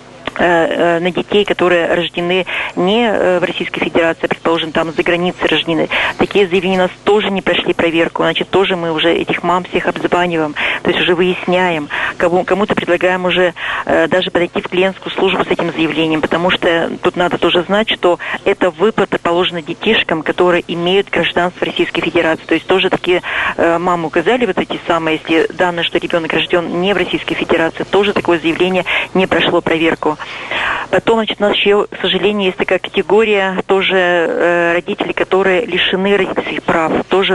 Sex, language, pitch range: female, Russian, 170-190 Hz